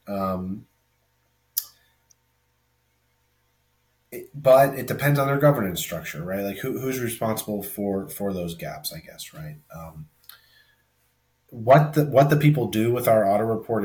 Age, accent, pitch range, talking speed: 30-49, American, 95-125 Hz, 140 wpm